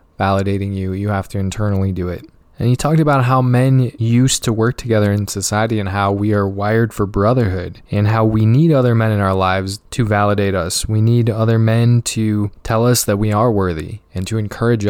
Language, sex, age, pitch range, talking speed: English, male, 20-39, 100-115 Hz, 215 wpm